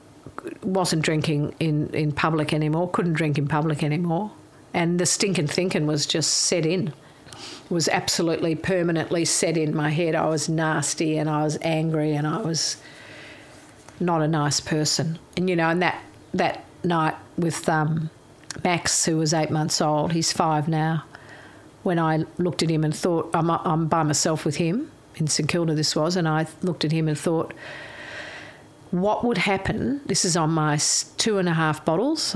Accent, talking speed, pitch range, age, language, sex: Australian, 180 wpm, 155-180 Hz, 50-69, English, female